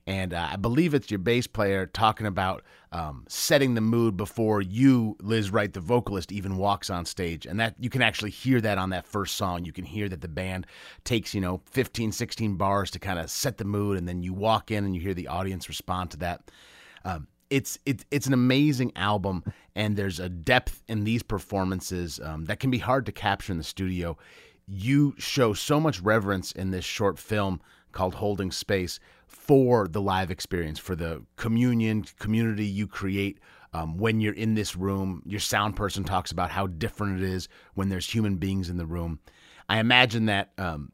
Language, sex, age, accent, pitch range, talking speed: English, male, 30-49, American, 95-110 Hz, 200 wpm